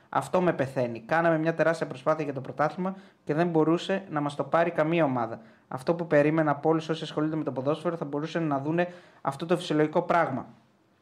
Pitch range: 145-165 Hz